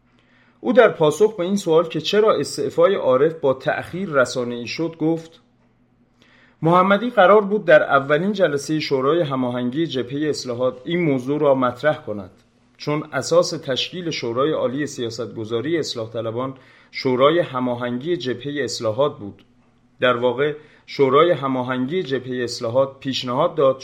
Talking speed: 125 wpm